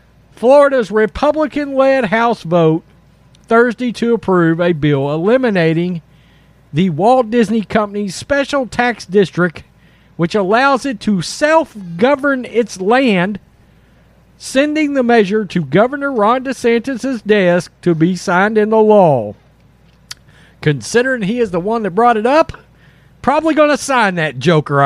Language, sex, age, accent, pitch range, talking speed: English, male, 50-69, American, 165-245 Hz, 130 wpm